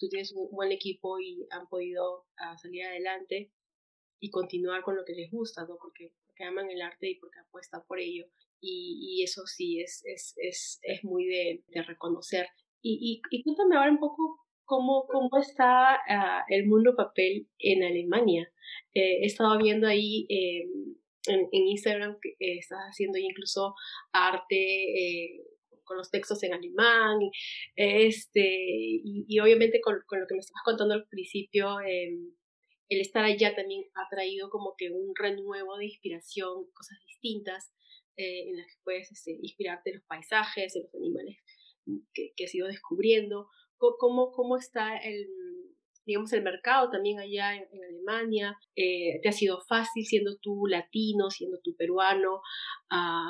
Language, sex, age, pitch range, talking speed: Spanish, female, 30-49, 185-240 Hz, 165 wpm